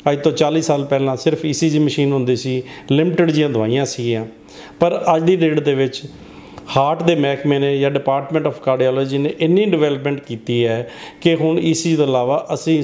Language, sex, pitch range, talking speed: Punjabi, male, 135-160 Hz, 180 wpm